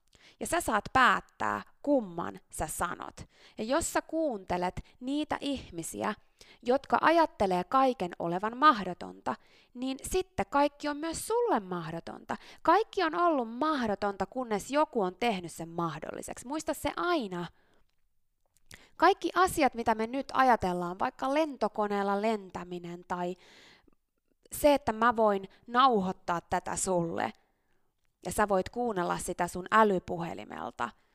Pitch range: 185-290 Hz